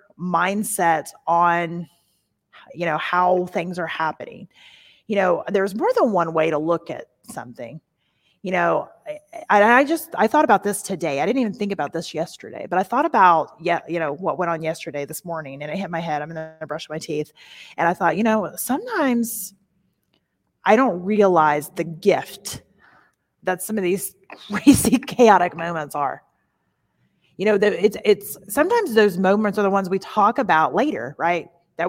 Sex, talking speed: female, 175 wpm